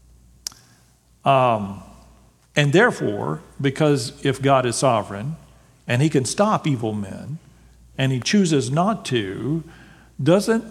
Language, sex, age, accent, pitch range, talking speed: English, male, 50-69, American, 130-170 Hz, 110 wpm